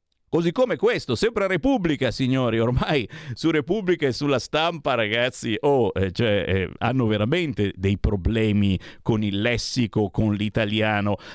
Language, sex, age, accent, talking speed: Italian, male, 50-69, native, 120 wpm